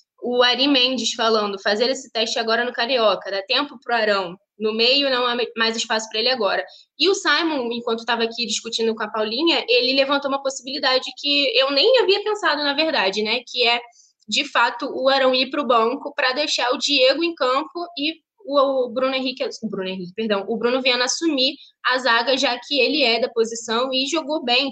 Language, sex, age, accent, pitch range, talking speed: Portuguese, female, 10-29, Brazilian, 225-270 Hz, 200 wpm